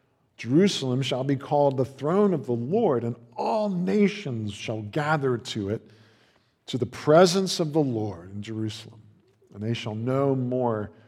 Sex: male